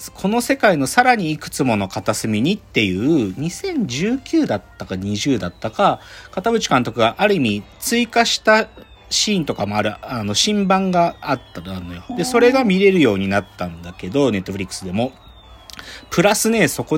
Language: Japanese